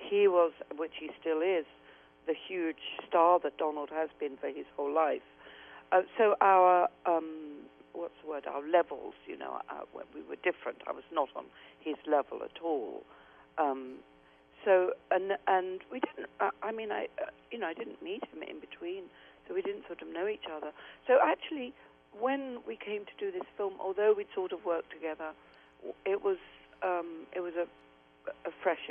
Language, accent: English, British